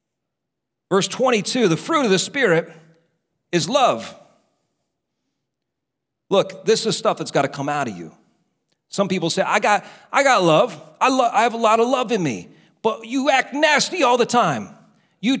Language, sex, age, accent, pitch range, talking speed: English, male, 40-59, American, 170-250 Hz, 180 wpm